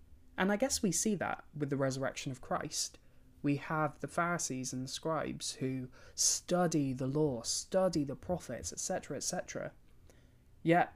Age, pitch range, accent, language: 20-39, 130-160 Hz, British, English